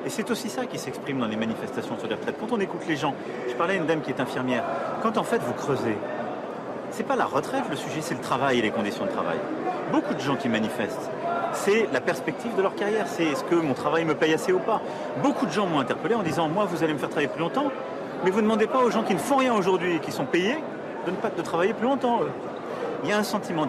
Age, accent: 40-59, French